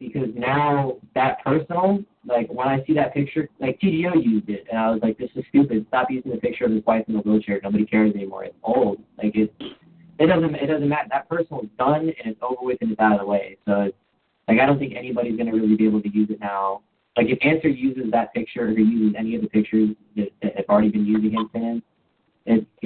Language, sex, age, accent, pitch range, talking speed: English, male, 20-39, American, 105-125 Hz, 245 wpm